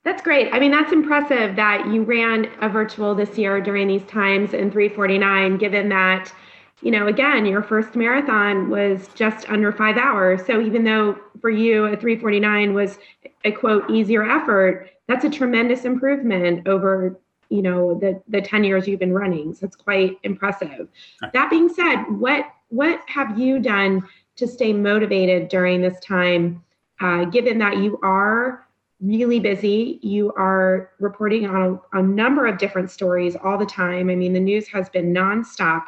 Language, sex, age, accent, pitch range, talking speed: English, female, 30-49, American, 185-225 Hz, 170 wpm